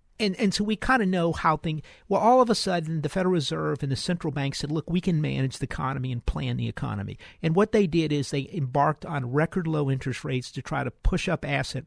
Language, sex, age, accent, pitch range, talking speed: English, male, 50-69, American, 135-165 Hz, 255 wpm